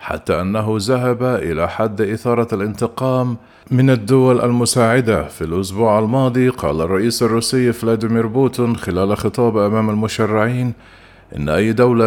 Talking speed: 125 wpm